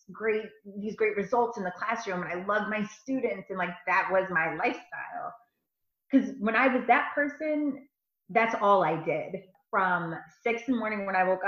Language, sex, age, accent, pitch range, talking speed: English, female, 30-49, American, 175-230 Hz, 190 wpm